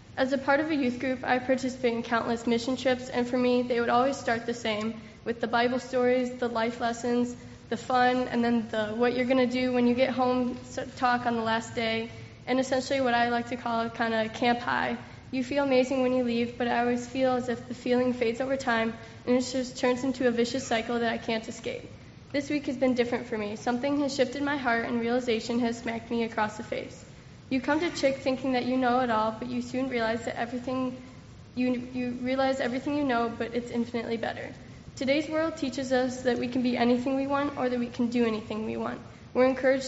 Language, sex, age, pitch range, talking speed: English, female, 20-39, 235-260 Hz, 235 wpm